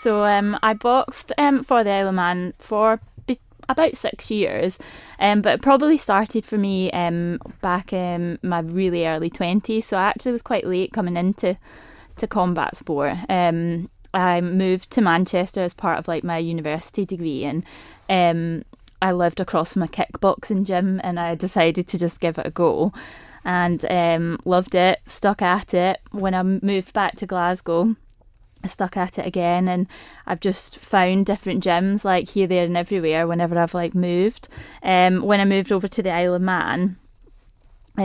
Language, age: English, 20-39